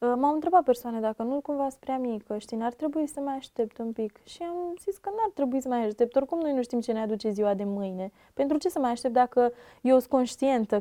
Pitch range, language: 215-275 Hz, Romanian